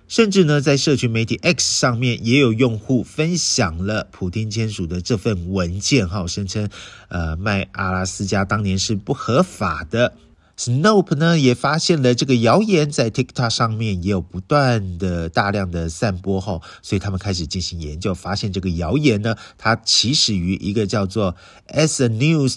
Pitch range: 95-125 Hz